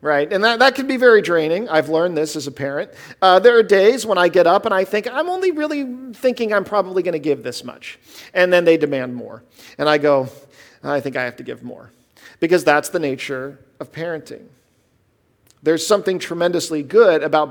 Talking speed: 215 wpm